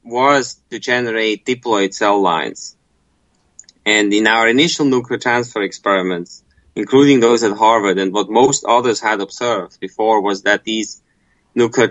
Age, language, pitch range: 20-39, English, 95-120 Hz